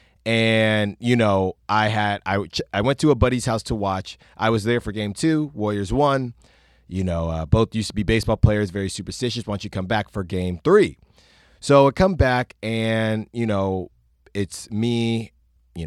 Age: 30-49